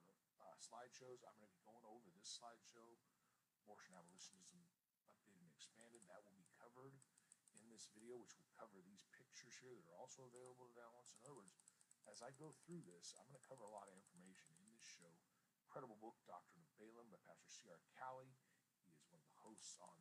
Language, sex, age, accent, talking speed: English, male, 40-59, American, 205 wpm